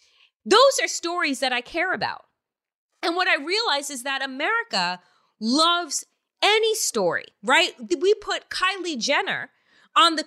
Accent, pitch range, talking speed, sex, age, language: American, 225-335 Hz, 140 wpm, female, 30-49, English